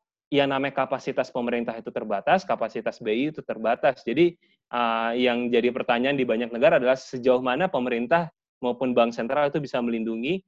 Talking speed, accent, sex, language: 155 wpm, native, male, Indonesian